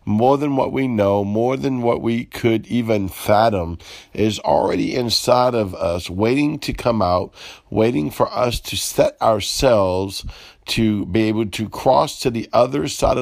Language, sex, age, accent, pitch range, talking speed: English, male, 50-69, American, 95-115 Hz, 165 wpm